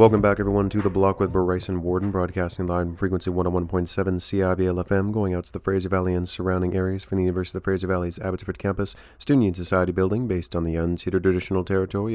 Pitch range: 90-100 Hz